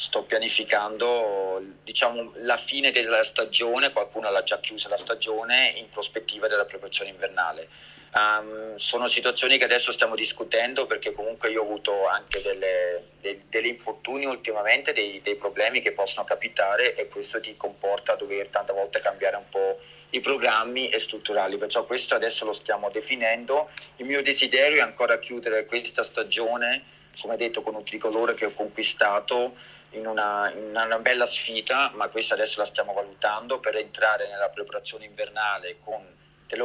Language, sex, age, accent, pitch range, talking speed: Italian, male, 30-49, native, 105-140 Hz, 160 wpm